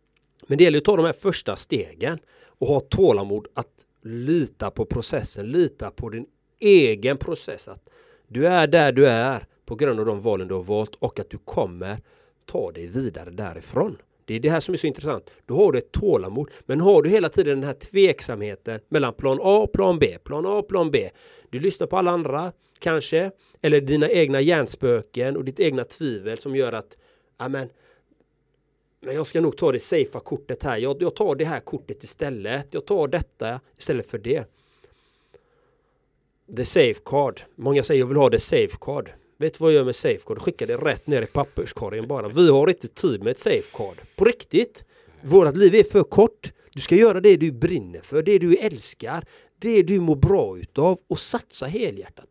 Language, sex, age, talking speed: Swedish, male, 30-49, 195 wpm